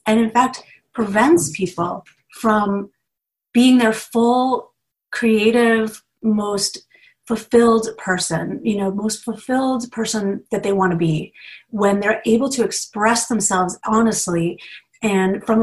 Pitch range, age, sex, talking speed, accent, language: 190-240 Hz, 30-49, female, 125 wpm, American, English